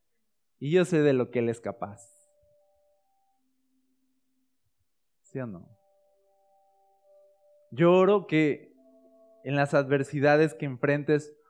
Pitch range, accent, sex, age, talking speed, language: 120-185 Hz, Mexican, male, 20-39, 105 wpm, Spanish